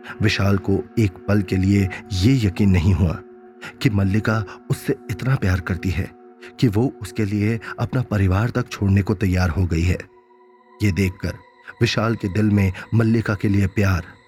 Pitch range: 100-125 Hz